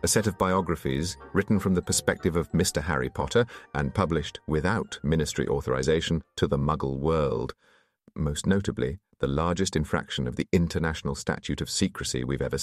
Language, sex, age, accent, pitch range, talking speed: English, male, 40-59, British, 80-120 Hz, 160 wpm